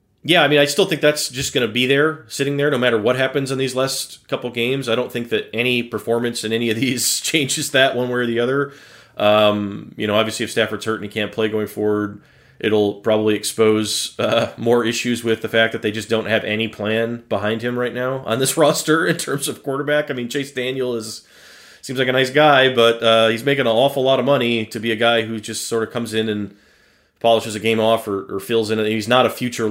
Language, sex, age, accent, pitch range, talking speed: English, male, 30-49, American, 110-135 Hz, 250 wpm